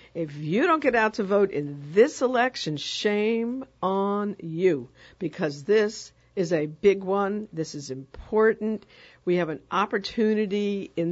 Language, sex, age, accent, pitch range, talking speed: English, female, 60-79, American, 160-210 Hz, 145 wpm